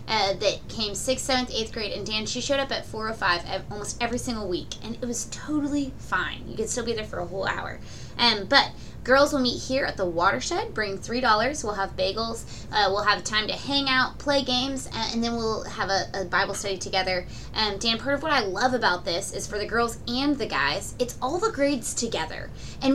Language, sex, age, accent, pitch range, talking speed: English, female, 20-39, American, 190-255 Hz, 230 wpm